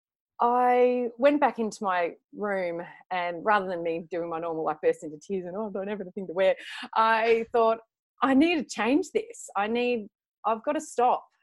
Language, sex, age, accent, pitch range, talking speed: English, female, 30-49, Australian, 180-240 Hz, 200 wpm